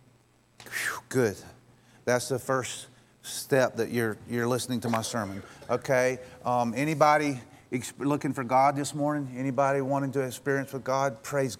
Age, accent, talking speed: 40-59, American, 145 wpm